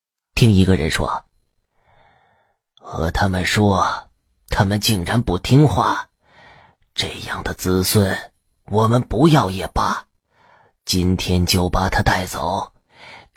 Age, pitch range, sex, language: 30-49, 90-130 Hz, male, Chinese